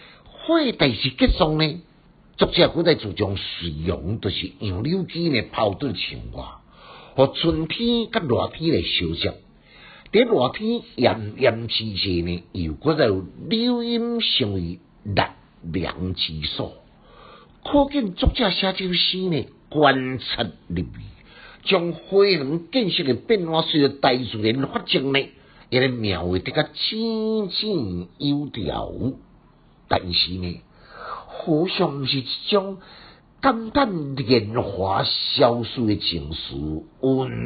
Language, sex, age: Chinese, male, 50-69